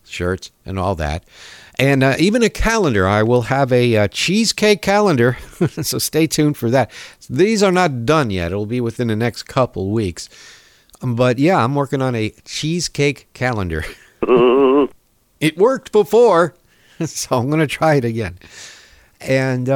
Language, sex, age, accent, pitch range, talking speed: English, male, 60-79, American, 105-150 Hz, 155 wpm